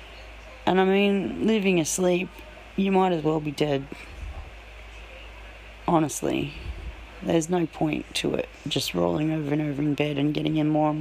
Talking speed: 160 wpm